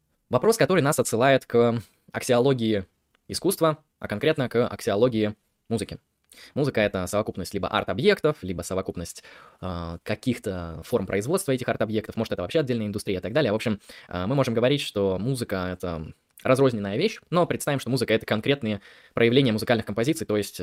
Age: 20-39